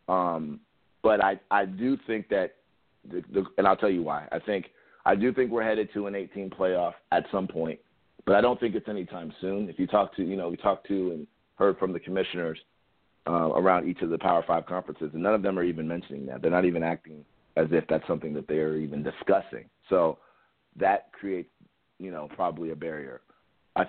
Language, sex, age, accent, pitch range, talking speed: English, male, 40-59, American, 85-105 Hz, 220 wpm